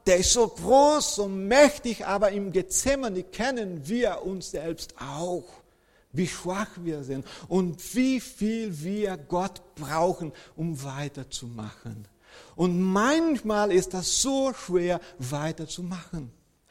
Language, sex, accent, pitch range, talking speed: German, male, German, 150-225 Hz, 120 wpm